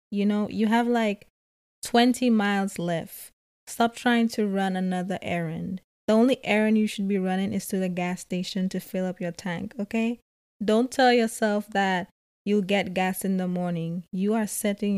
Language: English